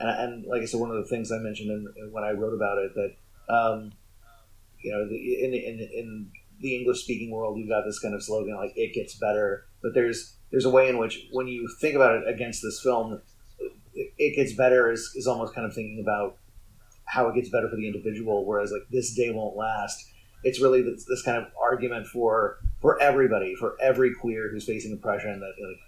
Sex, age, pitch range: male, 30-49, 105-130 Hz